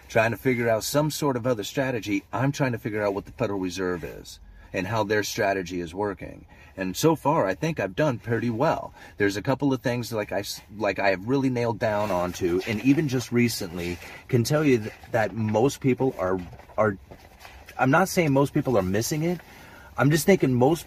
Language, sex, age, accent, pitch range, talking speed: English, male, 30-49, American, 100-135 Hz, 205 wpm